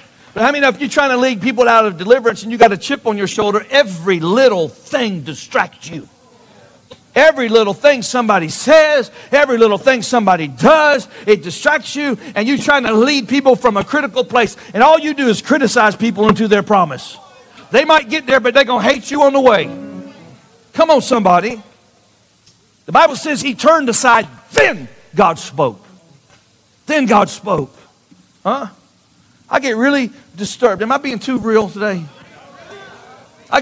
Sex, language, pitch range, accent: male, English, 200-275 Hz, American